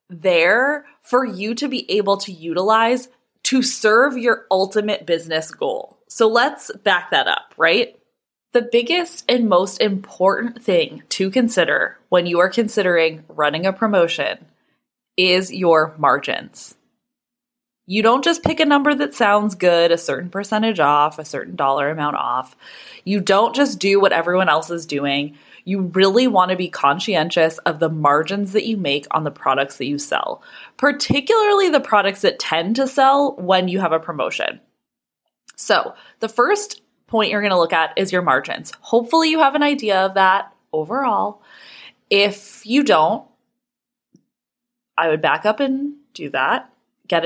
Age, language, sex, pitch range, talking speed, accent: 20-39, English, female, 170-245 Hz, 160 wpm, American